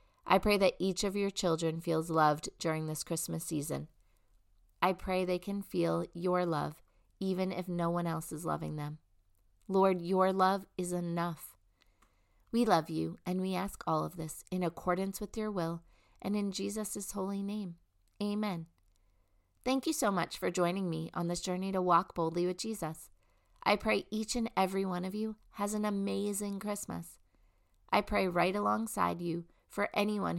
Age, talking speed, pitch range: 30-49, 170 wpm, 155-200 Hz